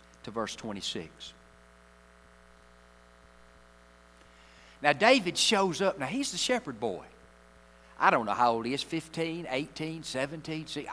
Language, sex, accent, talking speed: English, male, American, 125 wpm